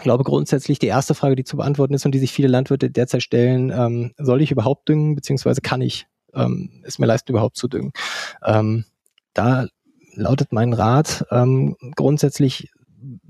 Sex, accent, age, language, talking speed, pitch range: male, German, 20-39, German, 175 wpm, 120-145 Hz